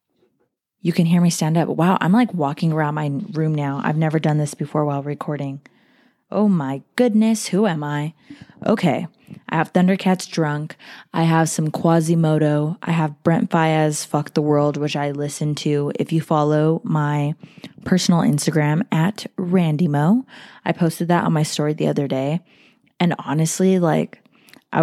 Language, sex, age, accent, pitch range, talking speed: English, female, 20-39, American, 150-185 Hz, 165 wpm